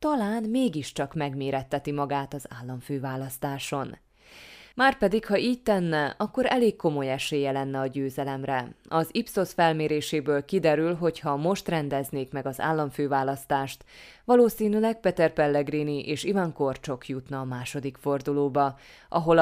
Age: 20-39